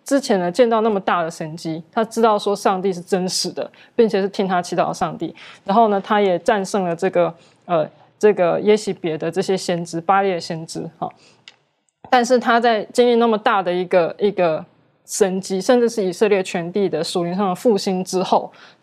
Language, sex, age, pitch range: Chinese, female, 20-39, 175-205 Hz